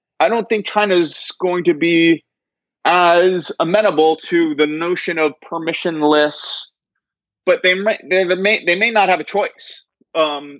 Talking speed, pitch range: 145 wpm, 140-180 Hz